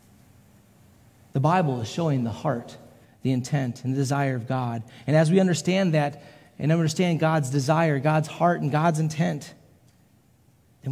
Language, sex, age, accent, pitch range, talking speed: English, male, 30-49, American, 125-190 Hz, 155 wpm